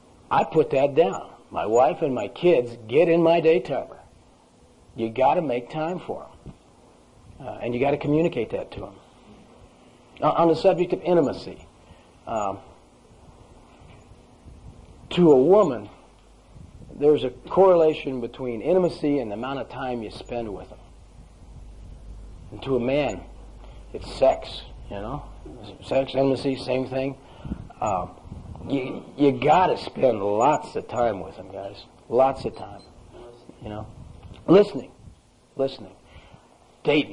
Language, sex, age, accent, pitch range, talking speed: English, male, 40-59, American, 115-155 Hz, 135 wpm